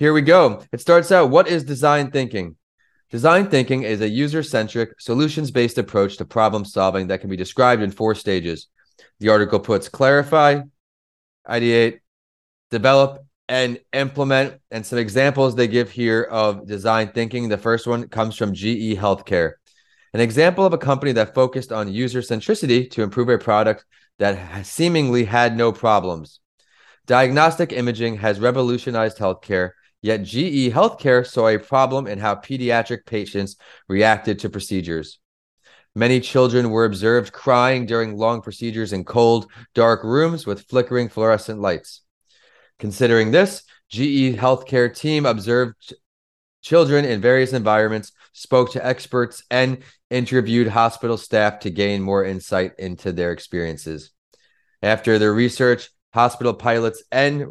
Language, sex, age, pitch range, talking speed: English, male, 30-49, 105-130 Hz, 140 wpm